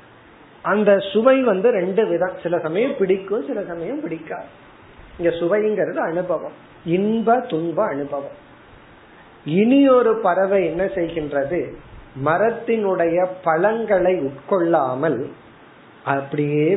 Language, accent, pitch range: Tamil, native, 150-200 Hz